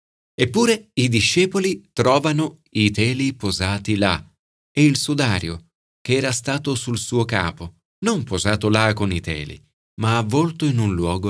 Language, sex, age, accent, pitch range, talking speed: Italian, male, 40-59, native, 100-155 Hz, 150 wpm